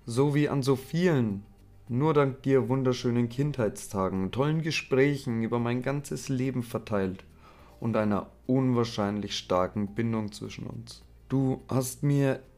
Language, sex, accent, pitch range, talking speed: German, male, German, 100-130 Hz, 130 wpm